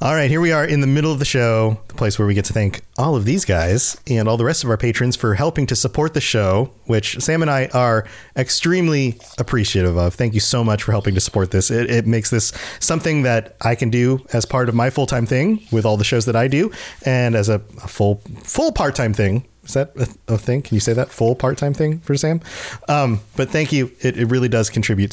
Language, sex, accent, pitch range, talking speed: English, male, American, 110-150 Hz, 255 wpm